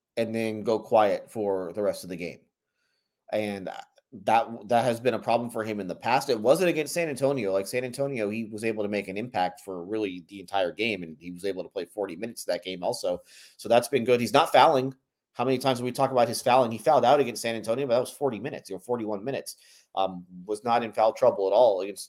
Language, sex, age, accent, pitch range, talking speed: English, male, 30-49, American, 100-120 Hz, 255 wpm